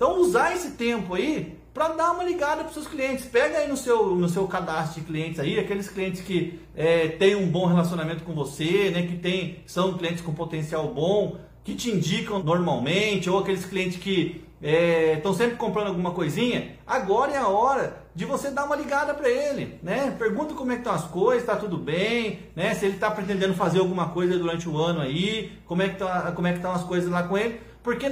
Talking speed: 205 wpm